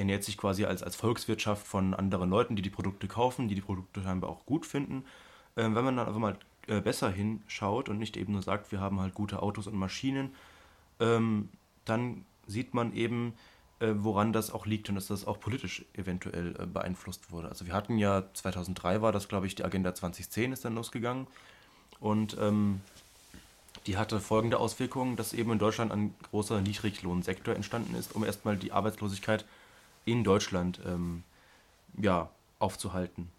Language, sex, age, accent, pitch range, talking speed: German, male, 20-39, German, 95-110 Hz, 175 wpm